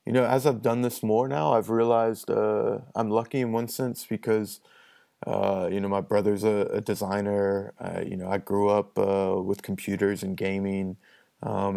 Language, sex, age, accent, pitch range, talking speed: English, male, 20-39, American, 100-110 Hz, 190 wpm